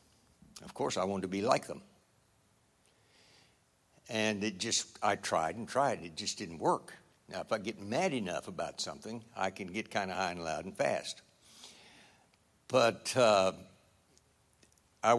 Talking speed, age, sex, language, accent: 155 wpm, 60-79, male, English, American